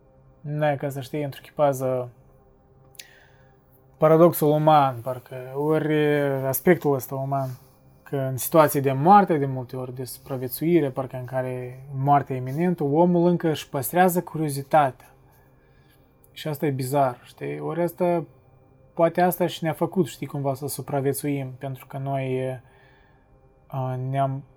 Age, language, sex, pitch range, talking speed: 20-39, Romanian, male, 130-150 Hz, 130 wpm